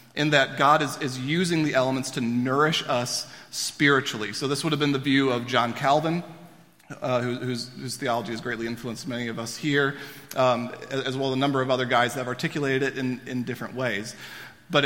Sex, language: male, English